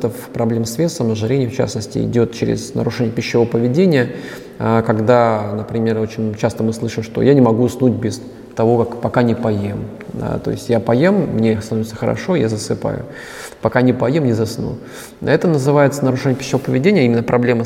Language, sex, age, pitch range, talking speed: Russian, male, 20-39, 110-130 Hz, 165 wpm